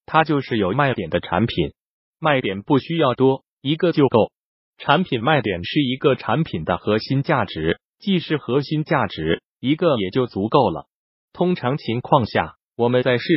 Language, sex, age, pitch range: Chinese, male, 30-49, 110-150 Hz